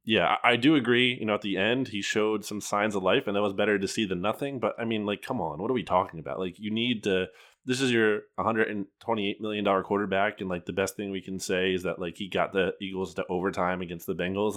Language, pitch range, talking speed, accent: English, 95-120 Hz, 270 wpm, American